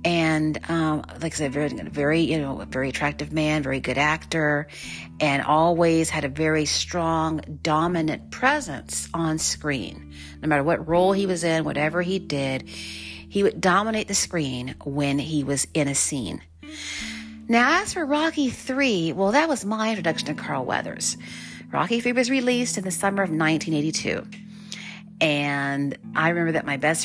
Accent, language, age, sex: American, English, 40-59, female